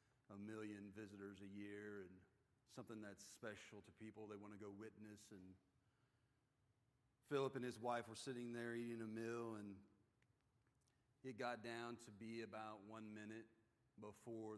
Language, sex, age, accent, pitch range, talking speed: English, male, 40-59, American, 105-120 Hz, 150 wpm